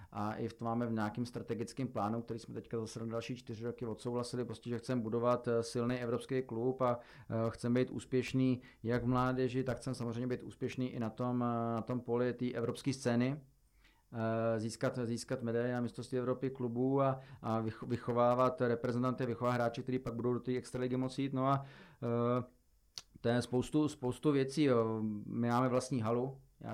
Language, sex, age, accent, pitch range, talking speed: Czech, male, 40-59, native, 115-125 Hz, 180 wpm